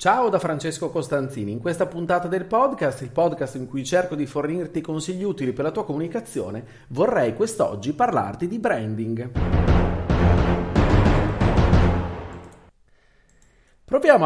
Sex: male